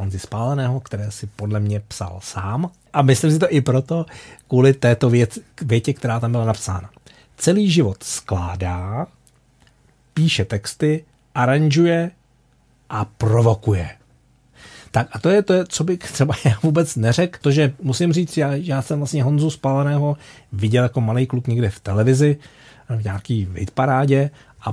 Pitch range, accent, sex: 105-135 Hz, native, male